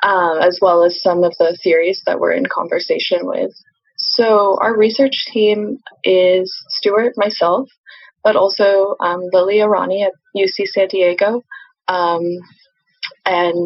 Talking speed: 135 wpm